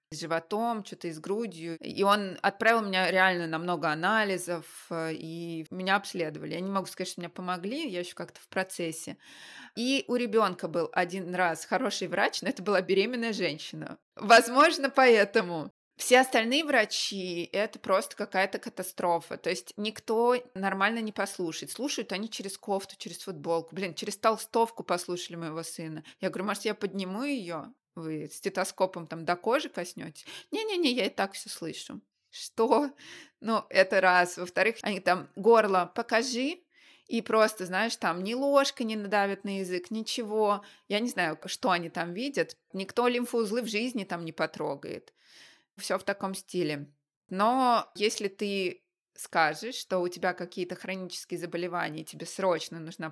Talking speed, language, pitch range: 155 wpm, Russian, 175-225 Hz